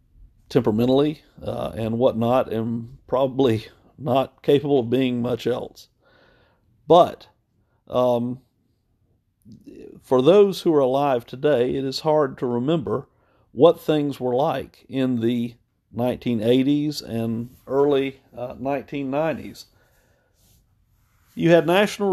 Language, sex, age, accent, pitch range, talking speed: English, male, 50-69, American, 115-145 Hz, 105 wpm